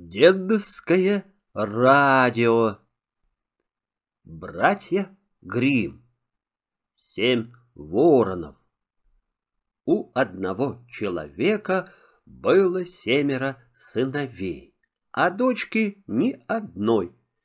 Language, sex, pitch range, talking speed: Russian, male, 120-195 Hz, 55 wpm